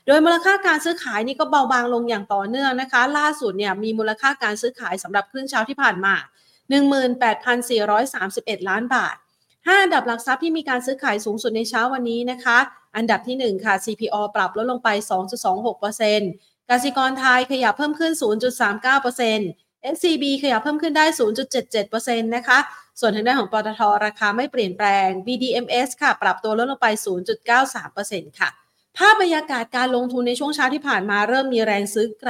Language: Thai